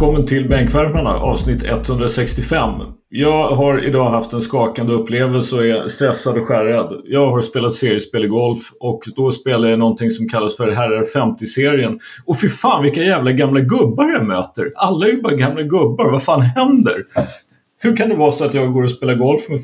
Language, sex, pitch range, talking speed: Swedish, male, 120-150 Hz, 185 wpm